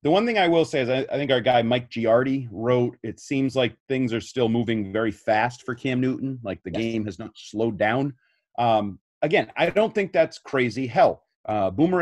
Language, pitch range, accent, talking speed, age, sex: English, 110-140 Hz, American, 215 wpm, 30-49, male